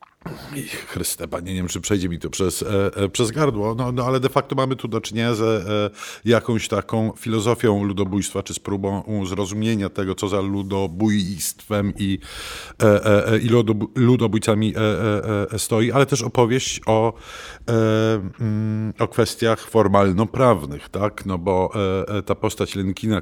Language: Polish